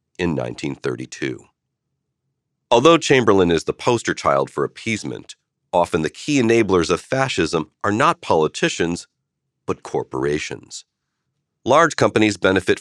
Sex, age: male, 40-59